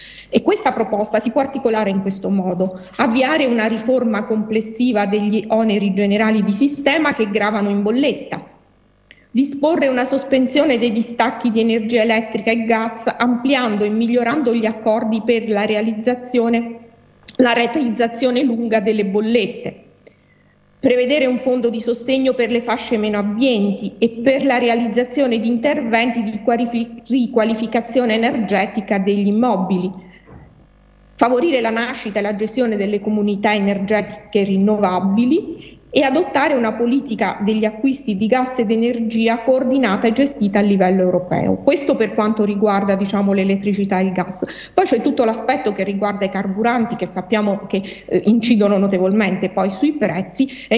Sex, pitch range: female, 205-245 Hz